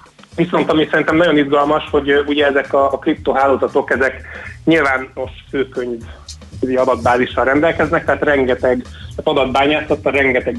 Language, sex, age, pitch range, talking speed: Hungarian, male, 30-49, 120-140 Hz, 110 wpm